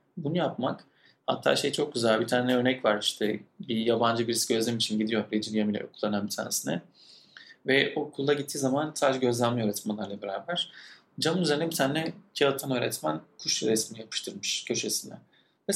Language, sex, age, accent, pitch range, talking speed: Turkish, male, 40-59, native, 120-150 Hz, 155 wpm